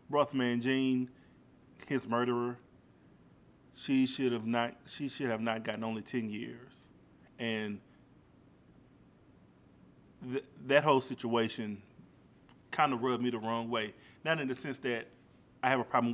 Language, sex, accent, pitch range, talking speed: English, male, American, 115-130 Hz, 140 wpm